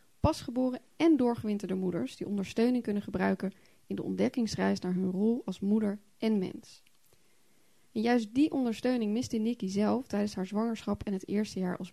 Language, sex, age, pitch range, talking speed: Dutch, female, 20-39, 195-245 Hz, 165 wpm